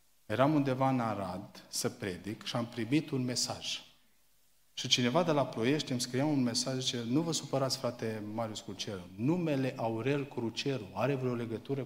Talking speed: 165 wpm